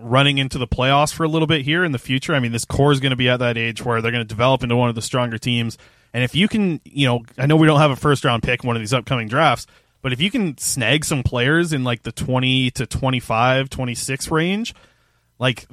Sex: male